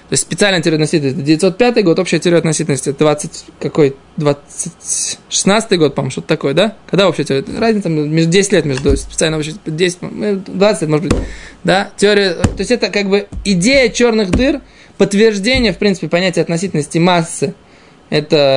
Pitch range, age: 145-185 Hz, 20-39